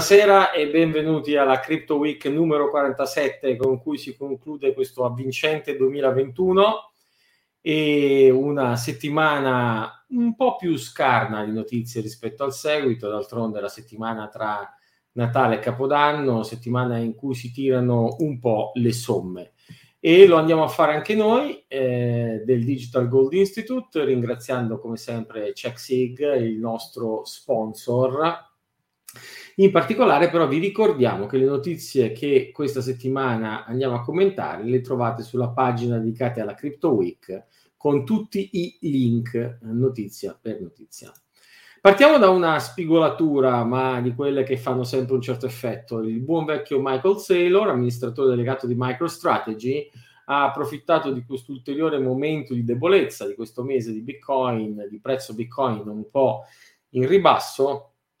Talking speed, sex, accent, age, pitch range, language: 140 wpm, male, native, 40-59, 120-155 Hz, Italian